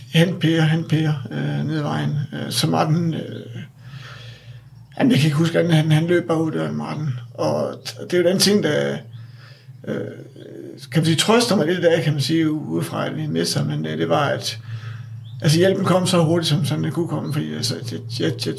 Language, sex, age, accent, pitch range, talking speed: Danish, male, 60-79, native, 125-165 Hz, 210 wpm